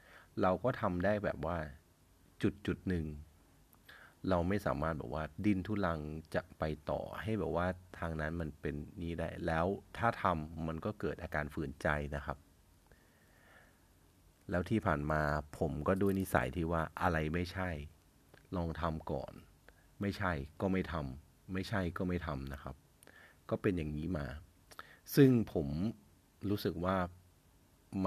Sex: male